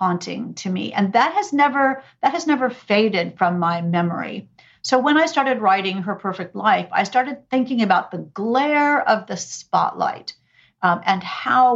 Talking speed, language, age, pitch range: 175 wpm, English, 50-69, 180-235 Hz